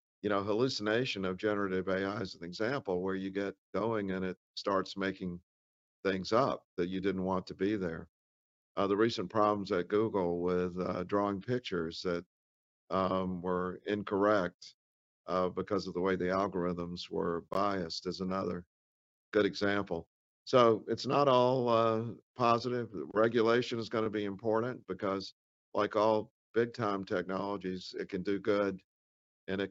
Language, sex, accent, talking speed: English, male, American, 155 wpm